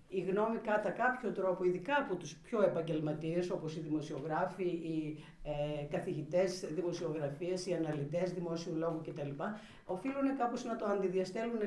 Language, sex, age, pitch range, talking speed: Greek, female, 50-69, 165-205 Hz, 135 wpm